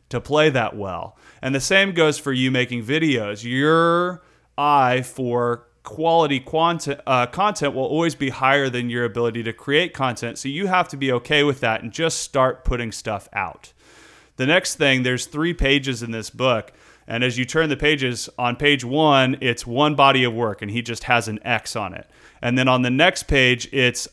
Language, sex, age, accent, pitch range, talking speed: English, male, 30-49, American, 120-145 Hz, 200 wpm